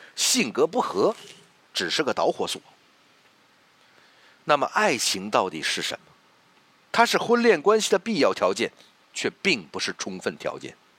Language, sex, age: Chinese, male, 50-69